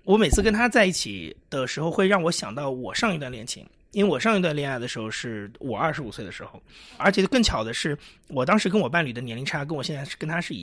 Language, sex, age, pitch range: Chinese, male, 30-49, 130-195 Hz